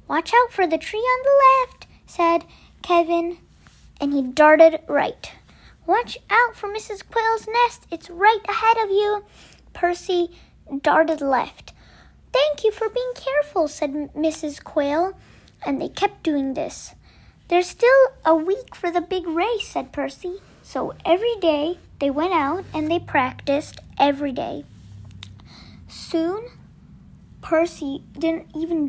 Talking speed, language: 135 wpm, Hindi